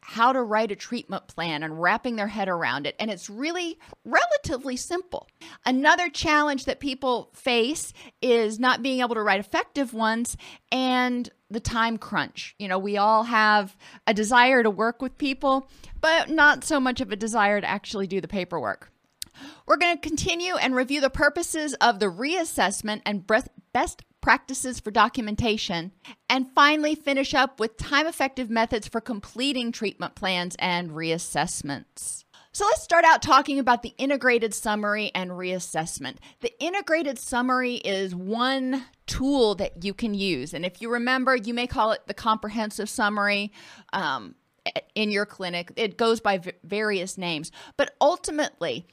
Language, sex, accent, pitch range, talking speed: English, female, American, 205-270 Hz, 160 wpm